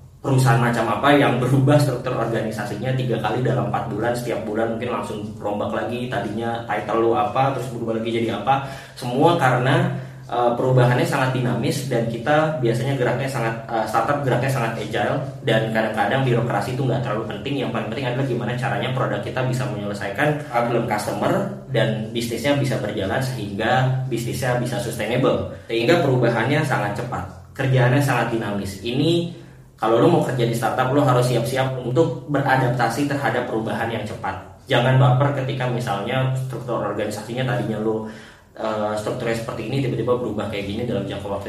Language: Indonesian